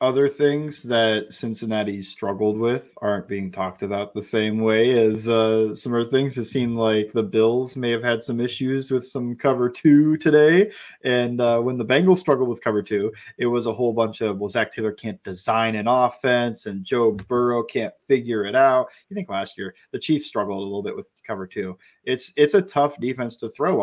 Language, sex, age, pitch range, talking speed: English, male, 20-39, 105-125 Hz, 205 wpm